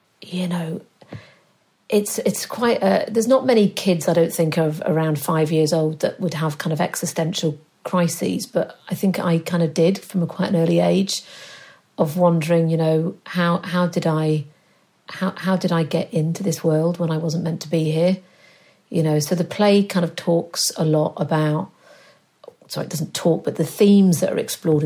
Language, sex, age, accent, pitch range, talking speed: English, female, 50-69, British, 160-190 Hz, 200 wpm